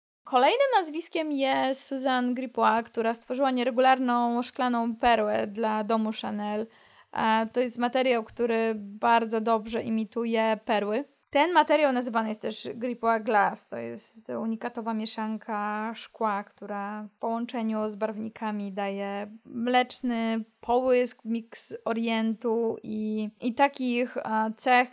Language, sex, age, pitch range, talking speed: Polish, female, 20-39, 220-250 Hz, 115 wpm